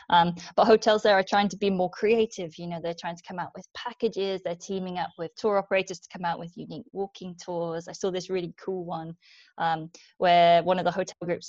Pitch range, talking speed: 175-210 Hz, 235 wpm